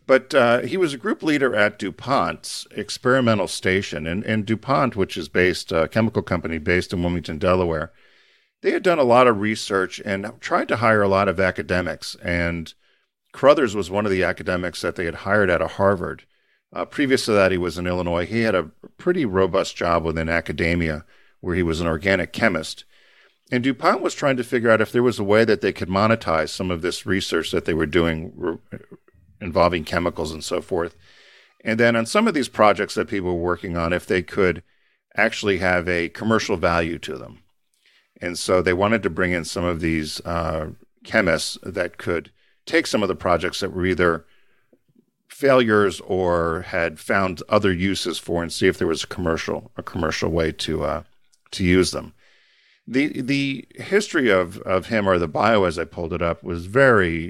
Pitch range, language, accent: 85-110 Hz, English, American